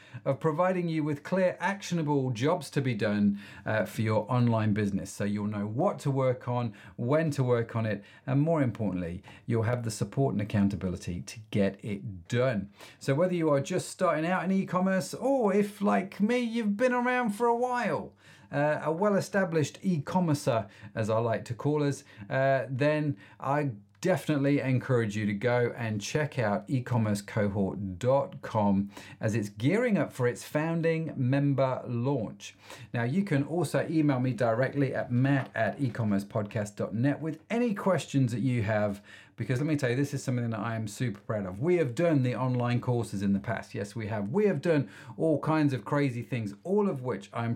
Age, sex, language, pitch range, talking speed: 40-59, male, English, 105-145 Hz, 185 wpm